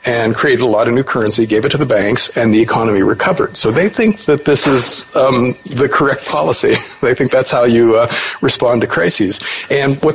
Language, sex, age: English, male, 50-69